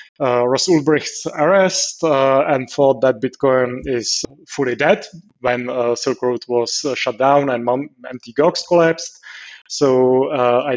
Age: 20-39